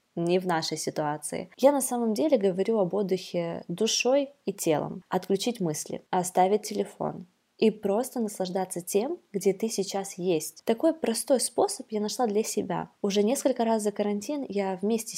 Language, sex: Russian, female